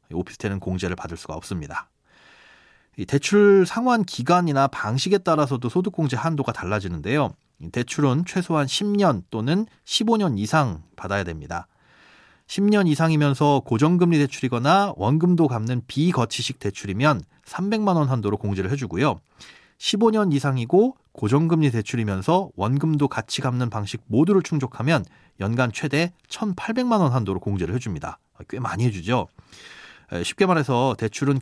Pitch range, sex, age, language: 110-160 Hz, male, 30-49, Korean